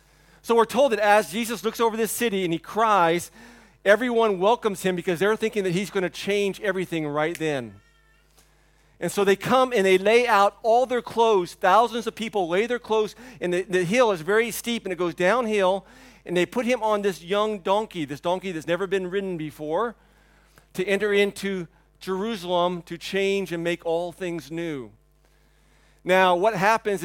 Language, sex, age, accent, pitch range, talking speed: English, male, 40-59, American, 160-195 Hz, 185 wpm